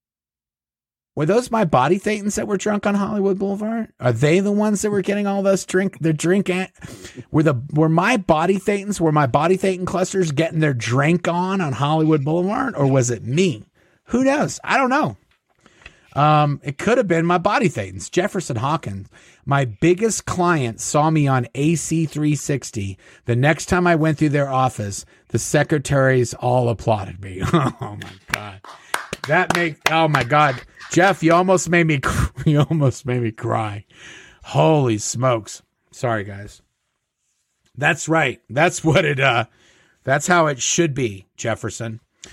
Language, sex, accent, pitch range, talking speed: English, male, American, 120-175 Hz, 160 wpm